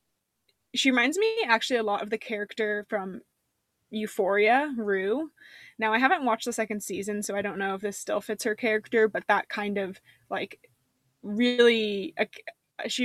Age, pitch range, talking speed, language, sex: 20-39, 200-235 Hz, 165 wpm, English, female